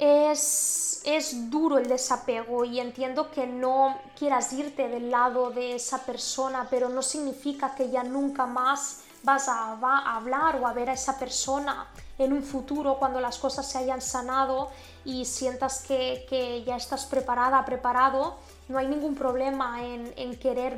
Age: 20-39